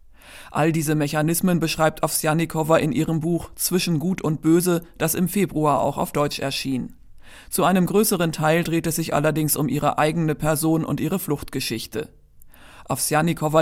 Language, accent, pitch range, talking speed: German, German, 150-175 Hz, 155 wpm